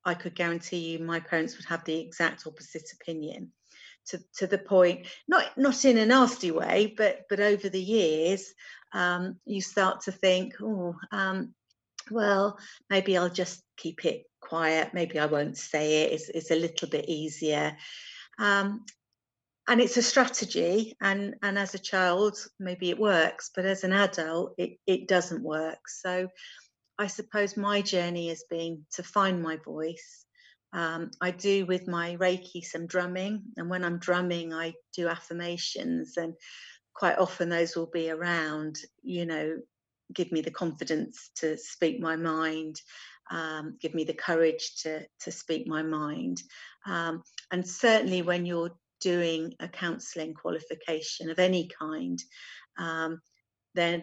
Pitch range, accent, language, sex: 160-190 Hz, British, English, female